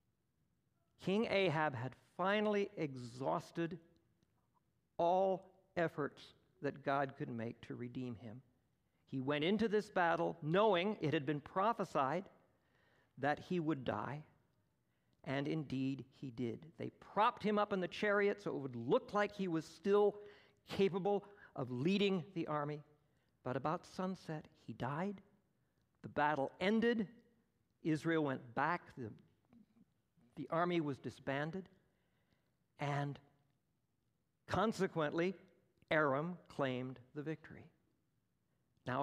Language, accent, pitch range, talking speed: English, American, 135-190 Hz, 115 wpm